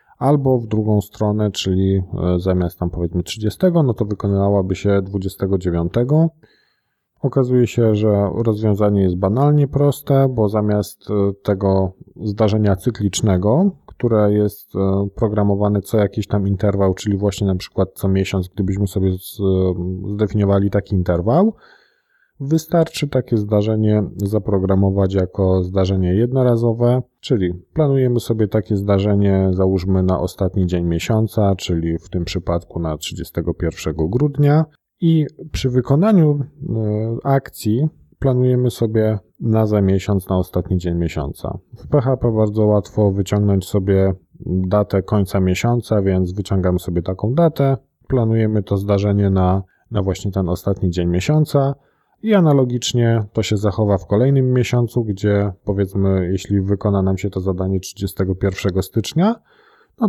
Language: Polish